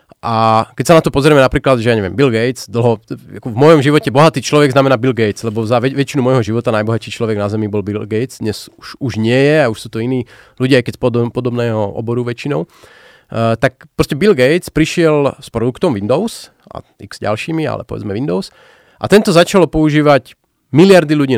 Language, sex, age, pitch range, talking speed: Slovak, male, 30-49, 120-155 Hz, 205 wpm